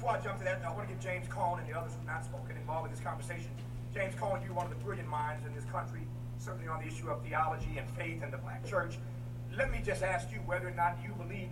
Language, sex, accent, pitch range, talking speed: English, male, American, 115-130 Hz, 285 wpm